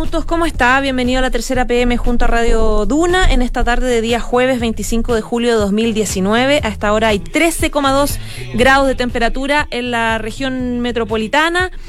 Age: 20-39